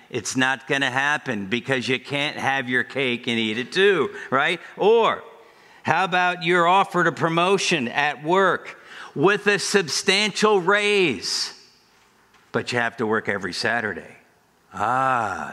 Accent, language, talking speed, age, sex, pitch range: American, English, 145 wpm, 60-79, male, 135-180 Hz